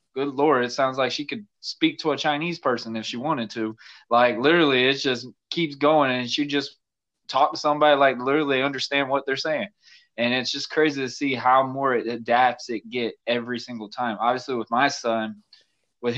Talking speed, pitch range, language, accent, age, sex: 200 wpm, 115-150 Hz, English, American, 20-39, male